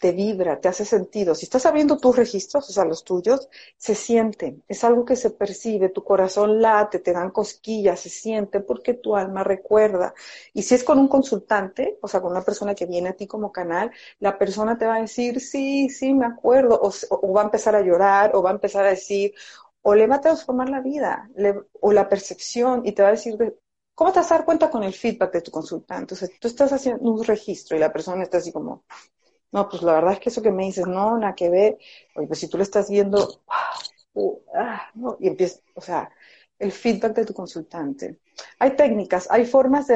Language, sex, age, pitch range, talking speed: Spanish, female, 40-59, 195-240 Hz, 225 wpm